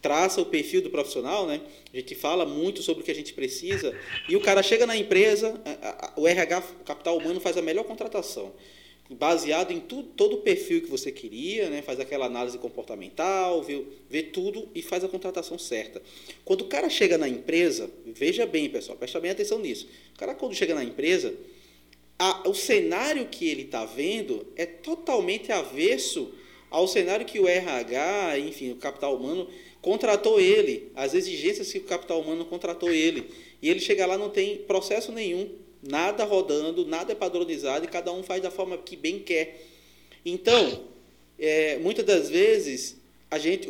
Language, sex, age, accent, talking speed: Portuguese, male, 20-39, Brazilian, 175 wpm